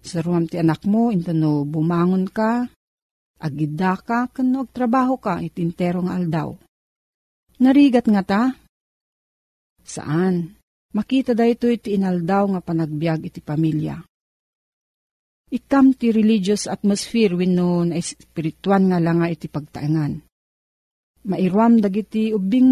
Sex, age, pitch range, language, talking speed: female, 40-59, 170-225 Hz, Filipino, 115 wpm